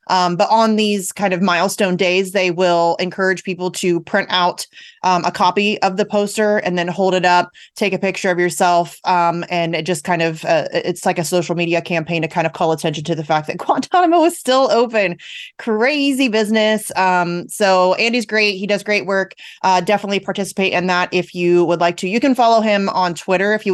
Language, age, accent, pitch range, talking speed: English, 30-49, American, 170-205 Hz, 215 wpm